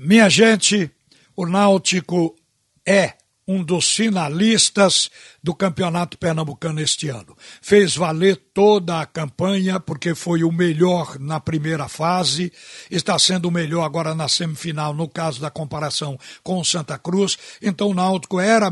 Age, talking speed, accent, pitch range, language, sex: 60-79, 140 wpm, Brazilian, 165-200 Hz, Portuguese, male